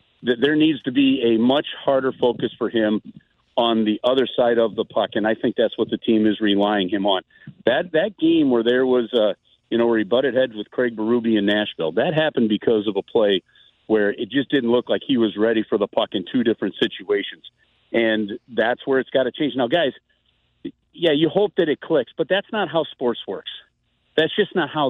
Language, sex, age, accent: English, male, 50-69, American